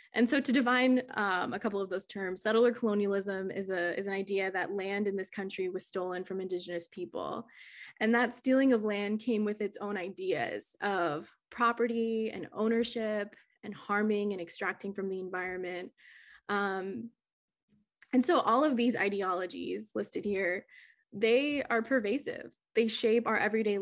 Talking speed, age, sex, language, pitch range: 160 wpm, 20-39, female, English, 195-230 Hz